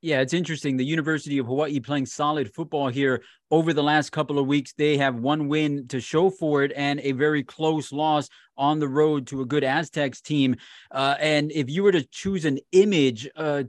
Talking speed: 210 wpm